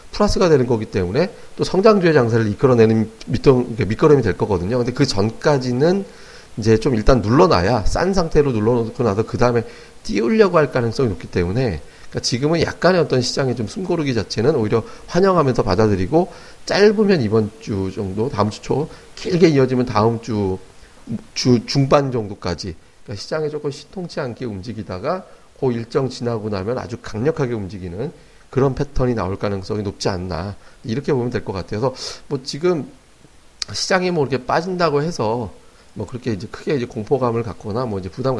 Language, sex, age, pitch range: Korean, male, 40-59, 105-145 Hz